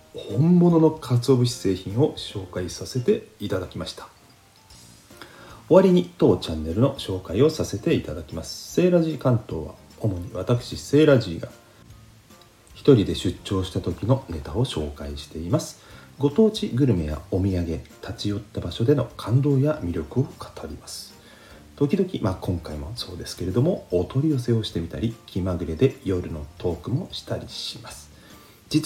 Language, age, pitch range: Japanese, 40-59, 90-135 Hz